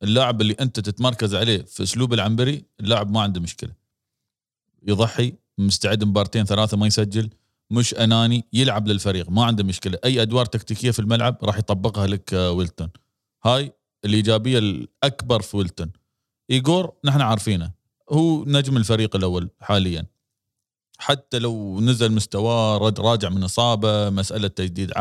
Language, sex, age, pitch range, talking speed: Arabic, male, 40-59, 105-130 Hz, 135 wpm